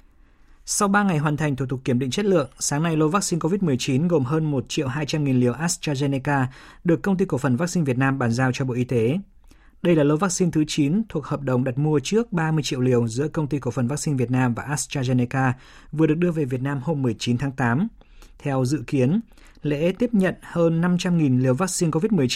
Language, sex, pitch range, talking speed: Vietnamese, male, 130-165 Hz, 220 wpm